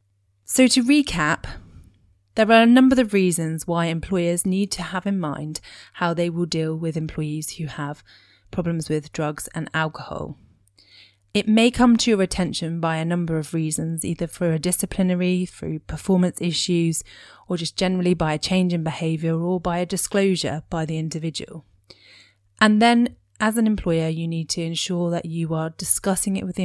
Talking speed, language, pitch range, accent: 175 wpm, English, 155-185 Hz, British